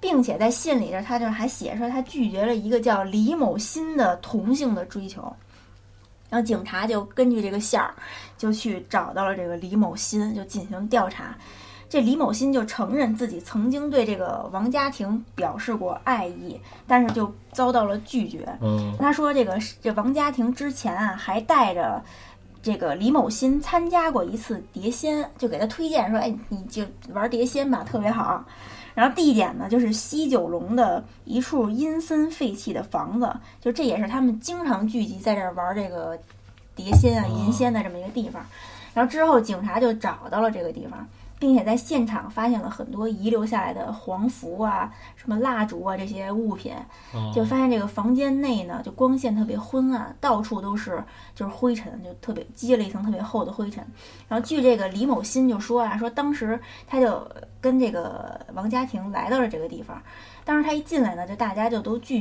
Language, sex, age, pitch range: Chinese, female, 20-39, 210-255 Hz